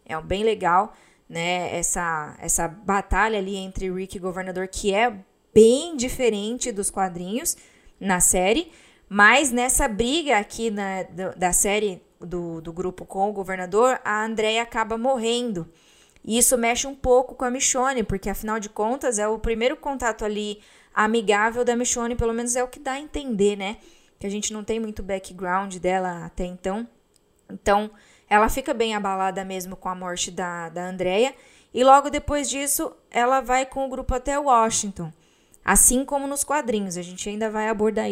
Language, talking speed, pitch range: Portuguese, 170 wpm, 190-240 Hz